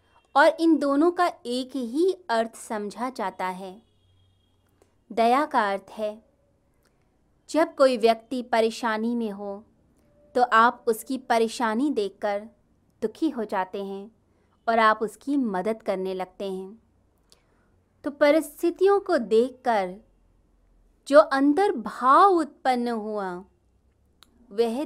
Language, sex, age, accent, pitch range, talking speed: Hindi, female, 20-39, native, 200-270 Hz, 110 wpm